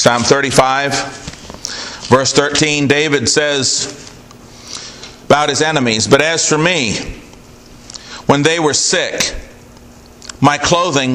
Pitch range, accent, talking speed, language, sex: 130-155 Hz, American, 100 wpm, English, male